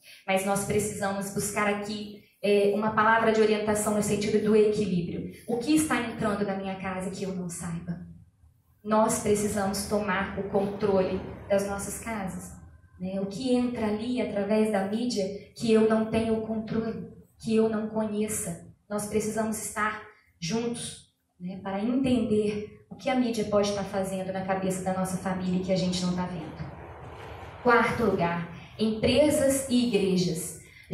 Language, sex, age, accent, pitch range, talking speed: Portuguese, female, 20-39, Brazilian, 190-235 Hz, 155 wpm